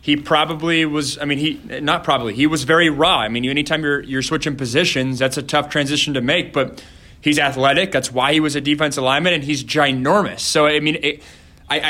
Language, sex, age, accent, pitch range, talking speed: English, male, 20-39, American, 135-165 Hz, 210 wpm